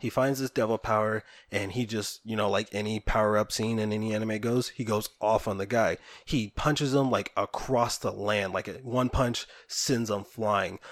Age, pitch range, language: 20-39, 105-125 Hz, English